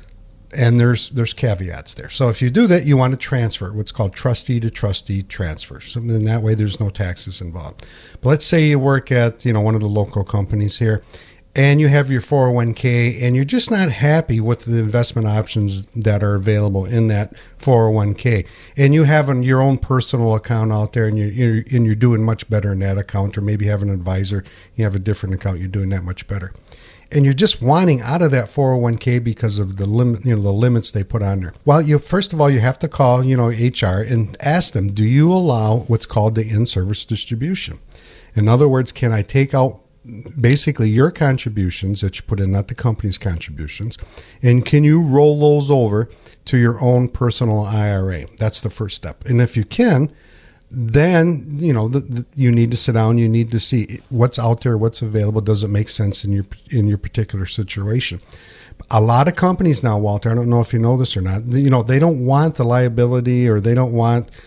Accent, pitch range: American, 105-125 Hz